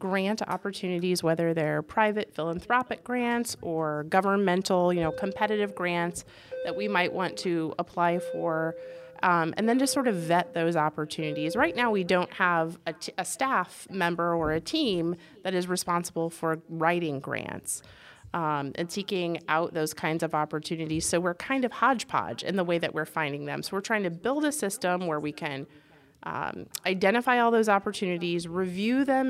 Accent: American